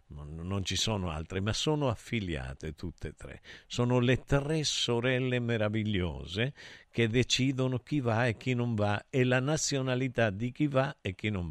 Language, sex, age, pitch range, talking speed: Italian, male, 50-69, 95-135 Hz, 165 wpm